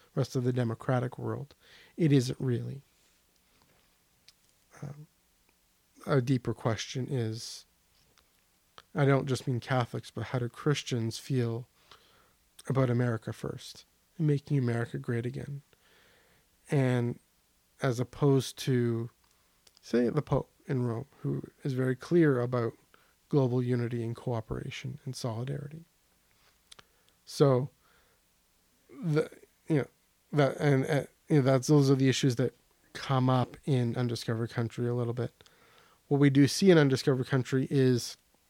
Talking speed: 130 wpm